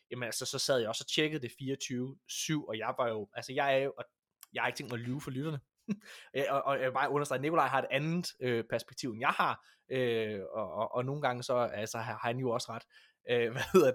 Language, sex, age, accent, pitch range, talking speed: Danish, male, 20-39, native, 120-160 Hz, 265 wpm